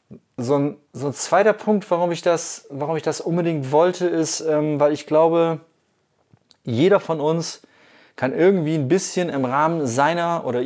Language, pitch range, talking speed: German, 125-160 Hz, 150 wpm